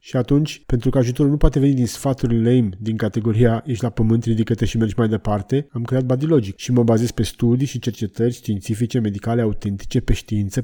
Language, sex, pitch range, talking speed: Romanian, male, 115-130 Hz, 210 wpm